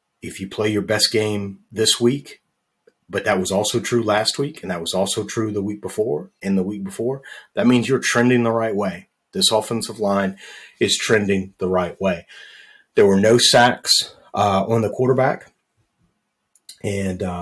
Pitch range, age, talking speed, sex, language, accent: 95-115 Hz, 30-49, 175 wpm, male, English, American